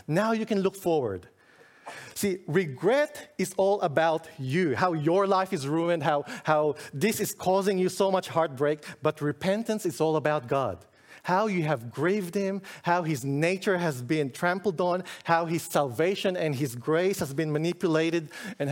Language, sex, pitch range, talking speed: English, male, 145-185 Hz, 170 wpm